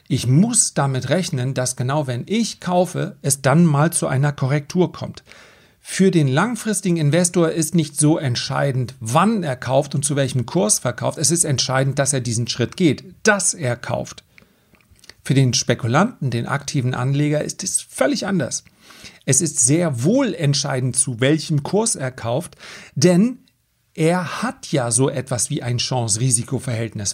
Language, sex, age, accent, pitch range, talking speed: German, male, 40-59, German, 130-180 Hz, 160 wpm